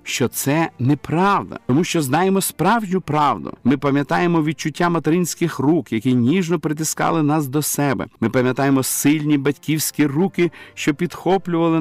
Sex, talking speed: male, 130 wpm